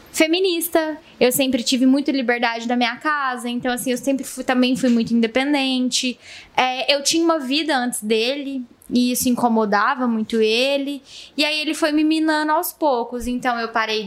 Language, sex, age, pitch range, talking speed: Portuguese, female, 10-29, 230-270 Hz, 165 wpm